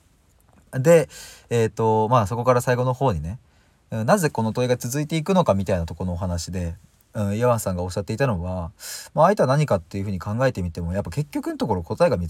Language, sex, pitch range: Japanese, male, 90-125 Hz